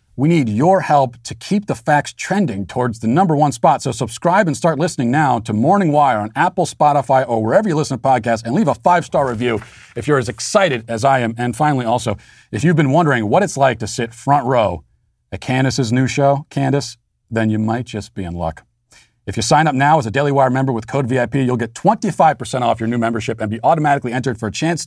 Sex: male